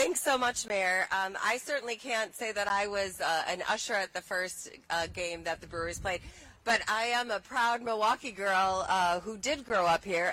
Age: 30-49